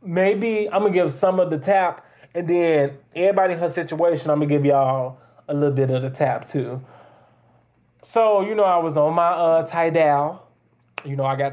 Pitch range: 140-200 Hz